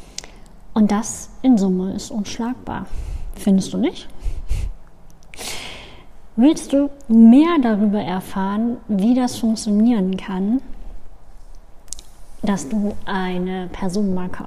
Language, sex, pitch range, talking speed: German, female, 195-230 Hz, 90 wpm